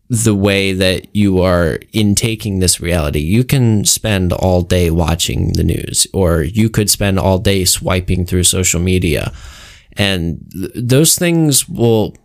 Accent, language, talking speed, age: American, English, 155 wpm, 20-39